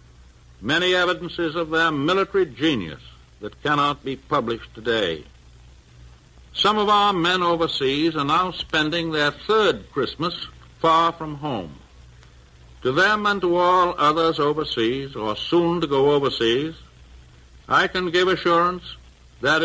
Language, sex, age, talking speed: English, male, 60-79, 130 wpm